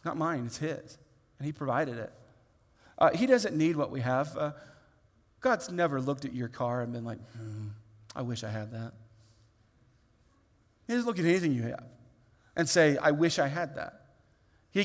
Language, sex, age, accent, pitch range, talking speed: English, male, 40-59, American, 125-195 Hz, 185 wpm